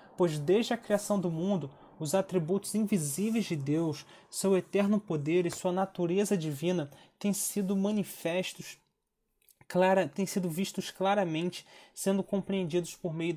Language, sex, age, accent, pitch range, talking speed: Portuguese, male, 20-39, Brazilian, 150-190 Hz, 135 wpm